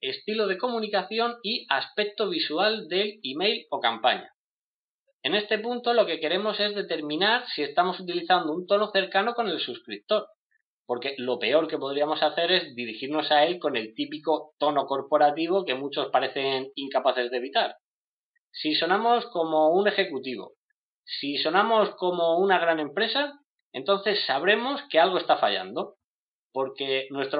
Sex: male